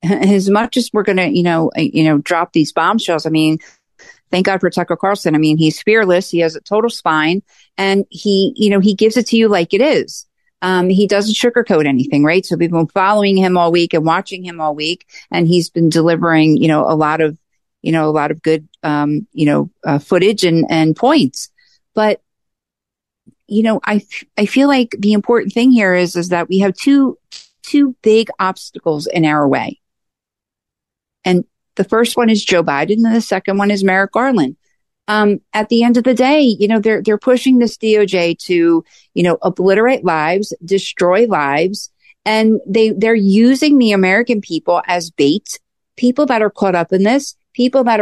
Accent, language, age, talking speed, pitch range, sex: American, English, 50-69, 200 wpm, 170-225 Hz, female